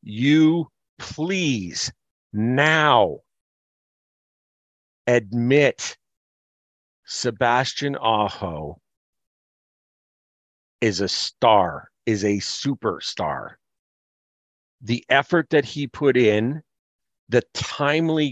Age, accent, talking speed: 50-69, American, 65 wpm